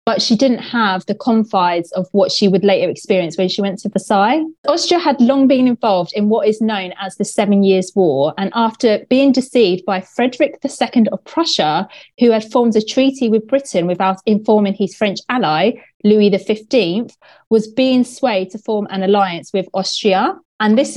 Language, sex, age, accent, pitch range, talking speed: English, female, 20-39, British, 190-240 Hz, 185 wpm